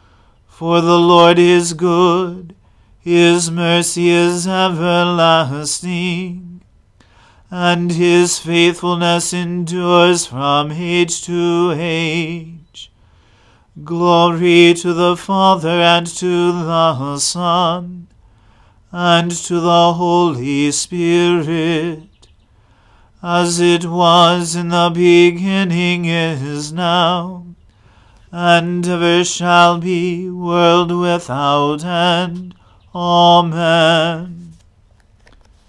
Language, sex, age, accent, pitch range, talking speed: English, male, 40-59, American, 150-175 Hz, 75 wpm